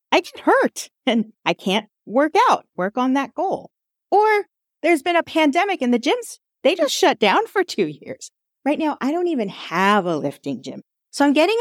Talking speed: 200 wpm